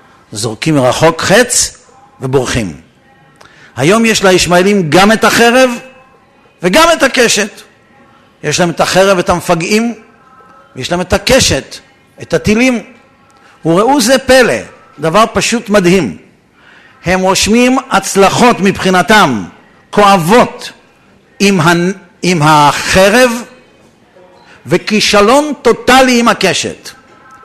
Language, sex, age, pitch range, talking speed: Hebrew, male, 50-69, 180-235 Hz, 95 wpm